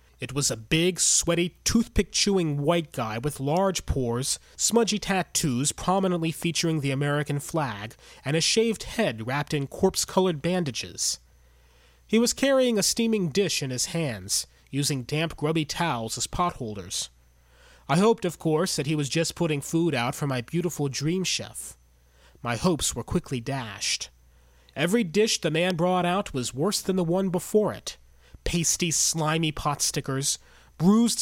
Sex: male